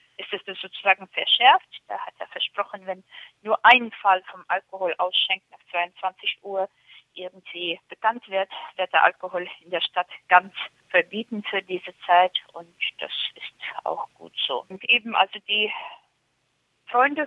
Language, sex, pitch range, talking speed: German, female, 190-235 Hz, 150 wpm